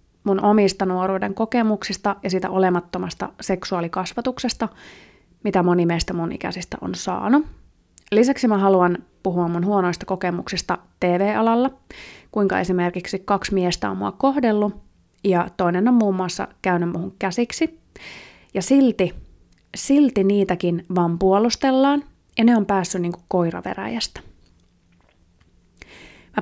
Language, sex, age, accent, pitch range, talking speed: Finnish, female, 30-49, native, 180-210 Hz, 115 wpm